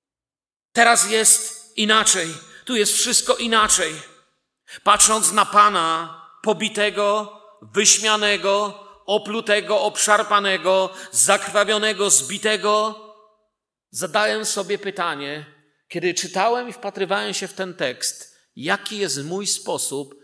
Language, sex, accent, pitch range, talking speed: Polish, male, native, 155-205 Hz, 90 wpm